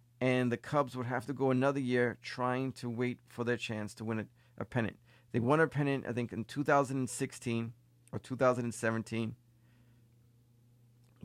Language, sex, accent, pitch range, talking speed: English, male, American, 120-140 Hz, 155 wpm